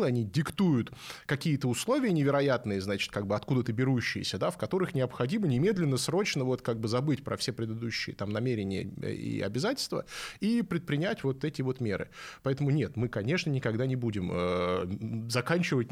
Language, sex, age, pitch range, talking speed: Russian, male, 20-39, 100-135 Hz, 155 wpm